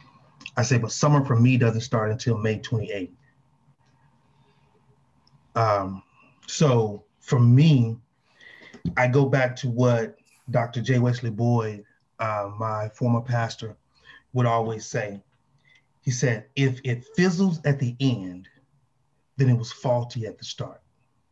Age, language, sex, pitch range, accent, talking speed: 30-49, English, male, 120-145 Hz, American, 130 wpm